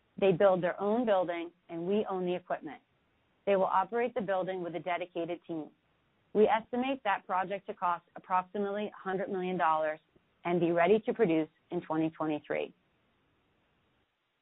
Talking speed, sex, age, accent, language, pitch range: 145 wpm, female, 30-49, American, English, 170-210 Hz